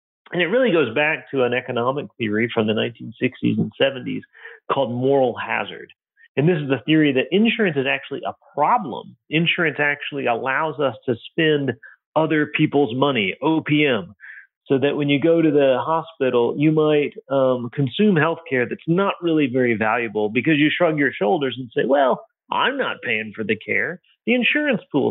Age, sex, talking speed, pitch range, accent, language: 40-59, male, 175 wpm, 125-160 Hz, American, English